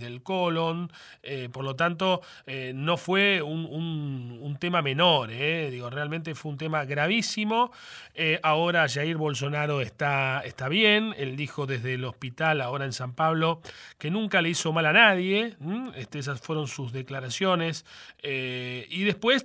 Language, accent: Spanish, Argentinian